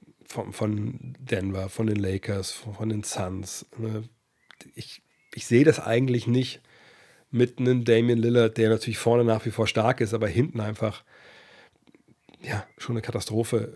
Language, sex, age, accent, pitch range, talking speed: German, male, 40-59, German, 110-120 Hz, 140 wpm